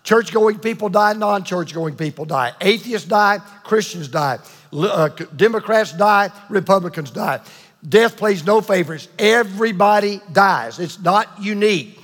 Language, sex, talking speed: English, male, 120 wpm